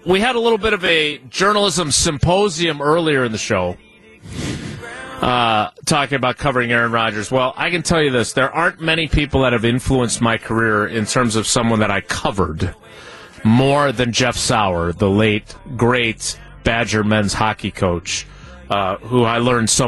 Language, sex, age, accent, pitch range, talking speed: English, male, 30-49, American, 100-135 Hz, 170 wpm